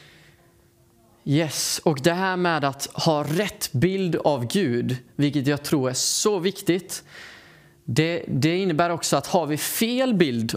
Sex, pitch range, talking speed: male, 140-175 Hz, 150 wpm